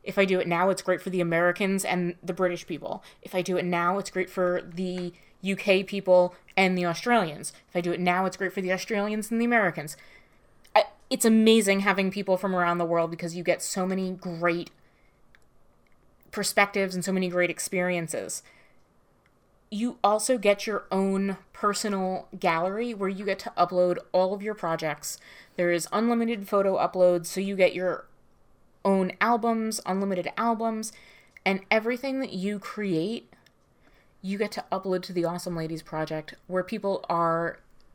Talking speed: 170 wpm